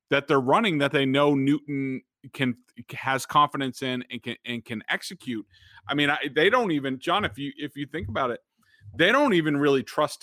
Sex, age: male, 30-49